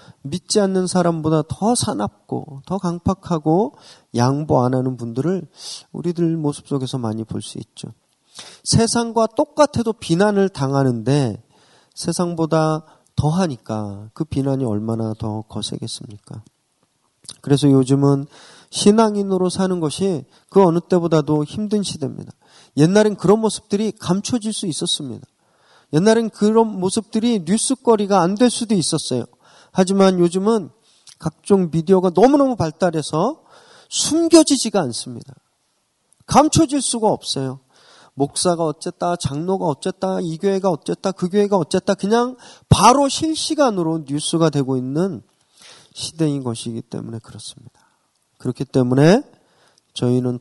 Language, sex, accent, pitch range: Korean, male, native, 135-200 Hz